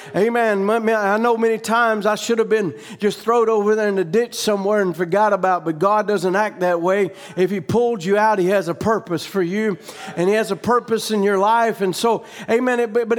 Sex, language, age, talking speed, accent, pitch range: male, English, 40-59, 225 wpm, American, 195-235 Hz